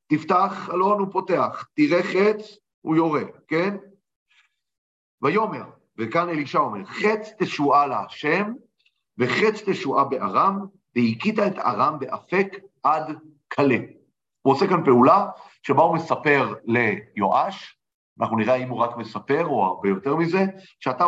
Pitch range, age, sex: 130-195 Hz, 40-59, male